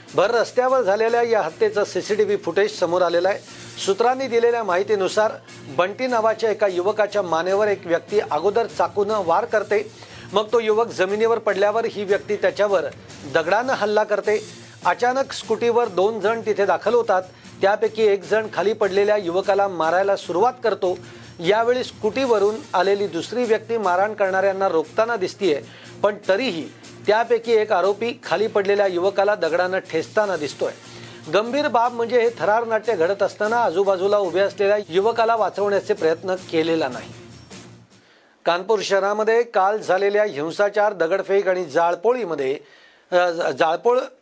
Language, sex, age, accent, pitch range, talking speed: Marathi, male, 40-59, native, 185-220 Hz, 90 wpm